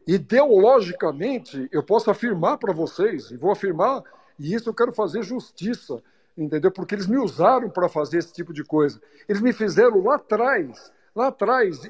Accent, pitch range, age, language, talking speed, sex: Brazilian, 170-255 Hz, 60-79, Portuguese, 165 wpm, male